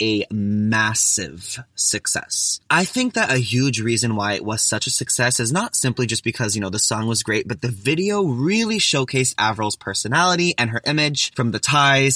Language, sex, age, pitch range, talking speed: English, male, 20-39, 110-135 Hz, 190 wpm